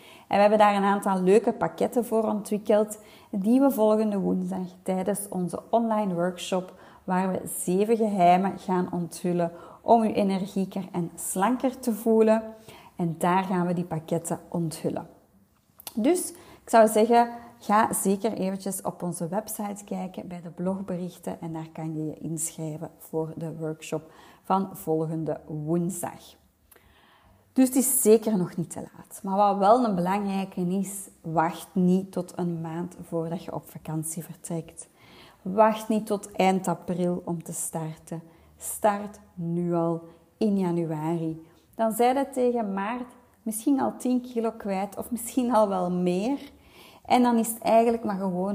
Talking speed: 150 wpm